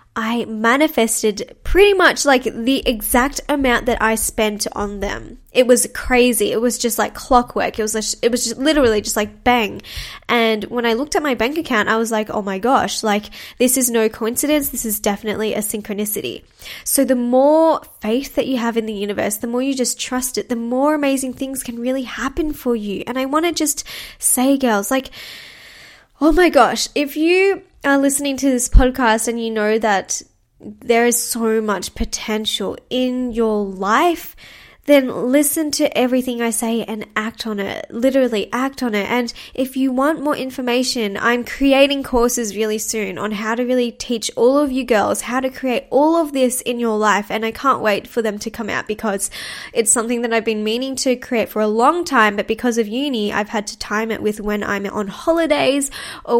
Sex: female